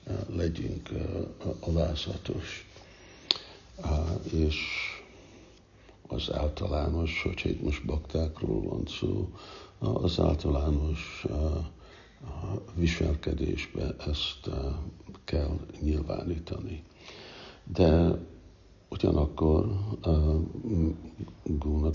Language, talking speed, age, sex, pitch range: Hungarian, 70 wpm, 60-79, male, 75-90 Hz